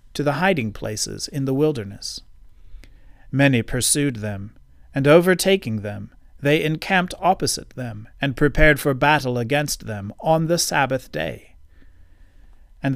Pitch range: 100-155 Hz